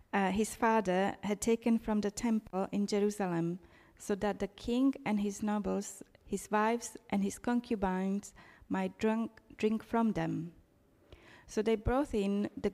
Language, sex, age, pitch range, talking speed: English, female, 30-49, 195-225 Hz, 145 wpm